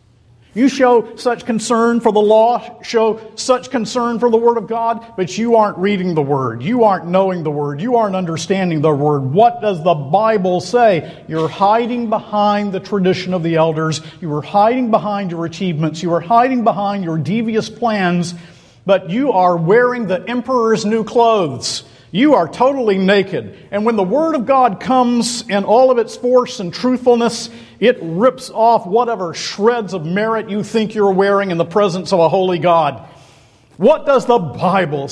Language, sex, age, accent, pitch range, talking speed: English, male, 50-69, American, 145-225 Hz, 180 wpm